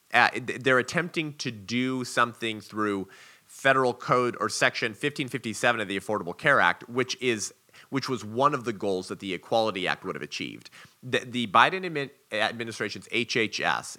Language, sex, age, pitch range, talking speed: English, male, 30-49, 105-130 Hz, 155 wpm